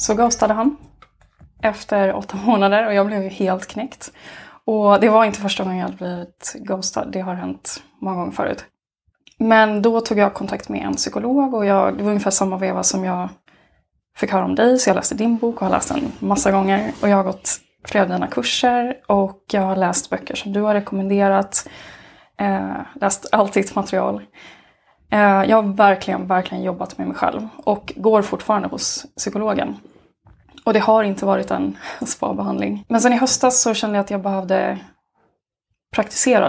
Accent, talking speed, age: native, 185 wpm, 20-39